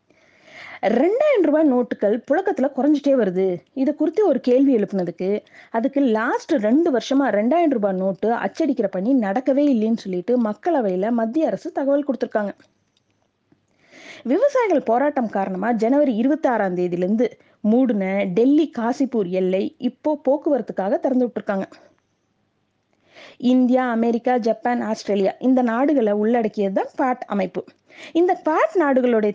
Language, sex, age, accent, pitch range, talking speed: Tamil, female, 20-39, native, 210-290 Hz, 110 wpm